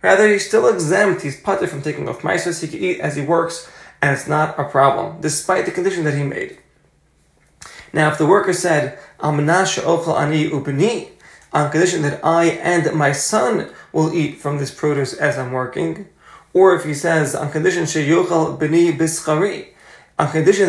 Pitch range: 150-180 Hz